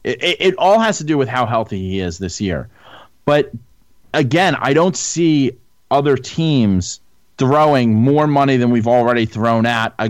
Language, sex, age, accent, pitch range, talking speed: English, male, 30-49, American, 105-135 Hz, 180 wpm